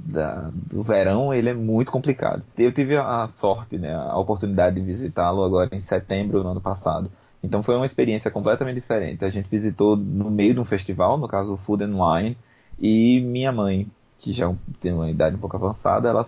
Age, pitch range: 20-39, 95-130 Hz